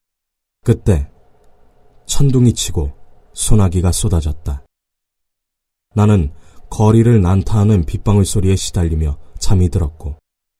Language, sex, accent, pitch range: Korean, male, native, 80-105 Hz